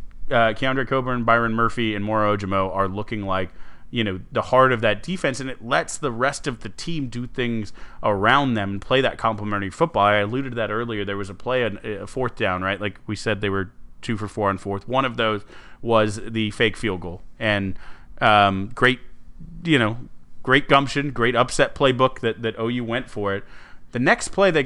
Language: English